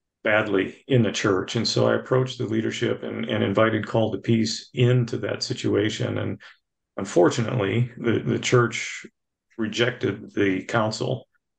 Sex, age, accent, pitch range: male, 50-69, American, 100-120 Hz